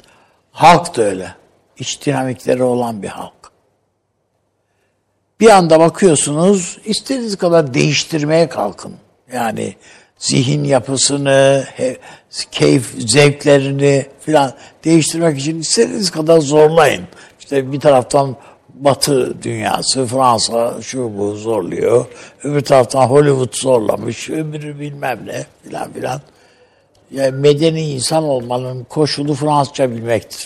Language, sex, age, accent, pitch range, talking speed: Turkish, male, 60-79, native, 125-155 Hz, 100 wpm